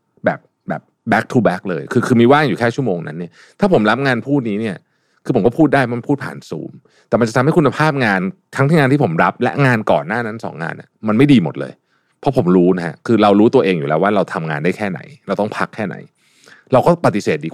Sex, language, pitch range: male, Thai, 90-135 Hz